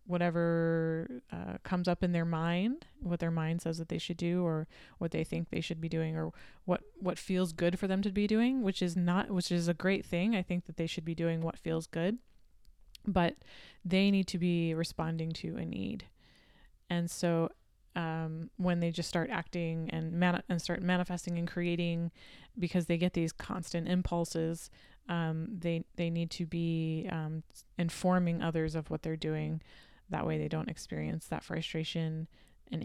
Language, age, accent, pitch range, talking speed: English, 20-39, American, 165-185 Hz, 185 wpm